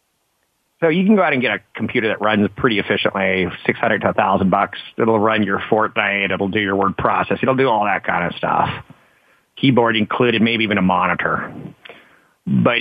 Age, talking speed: 40-59, 190 wpm